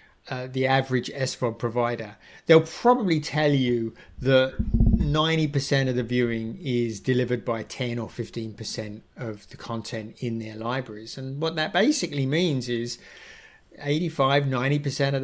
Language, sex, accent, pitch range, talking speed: English, male, British, 120-150 Hz, 140 wpm